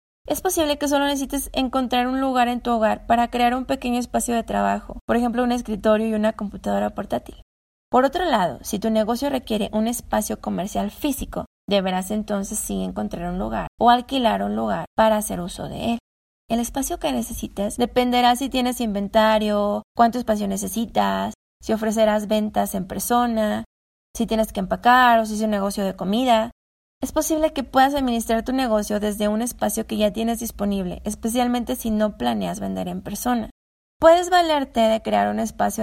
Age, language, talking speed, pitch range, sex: 20-39, English, 180 wpm, 205-245 Hz, female